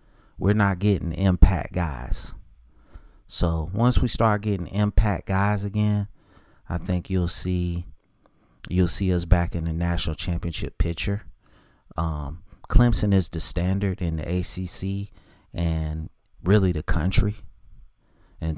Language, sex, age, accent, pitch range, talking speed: English, male, 30-49, American, 85-105 Hz, 125 wpm